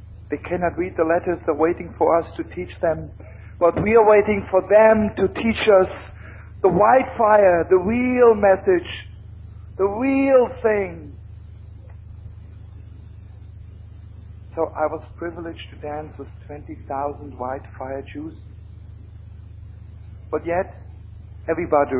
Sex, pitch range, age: male, 95-145 Hz, 50-69